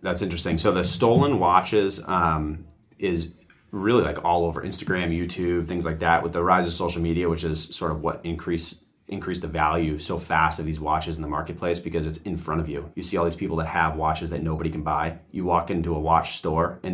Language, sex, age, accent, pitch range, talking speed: English, male, 30-49, American, 80-85 Hz, 230 wpm